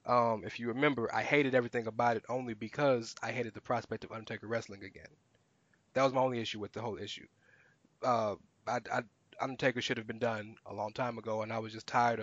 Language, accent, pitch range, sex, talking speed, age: English, American, 115-135 Hz, male, 220 wpm, 20-39